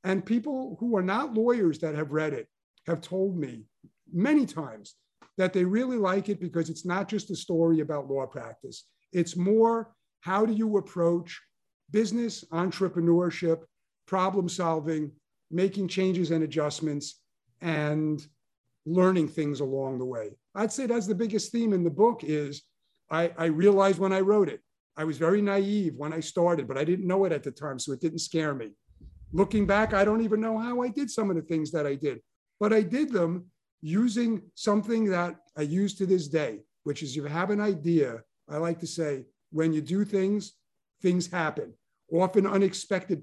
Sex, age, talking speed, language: male, 50-69, 185 wpm, English